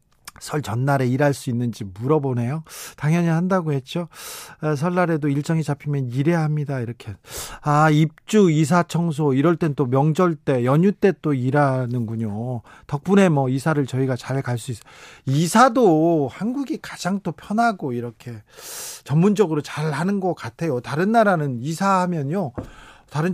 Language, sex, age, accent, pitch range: Korean, male, 40-59, native, 125-175 Hz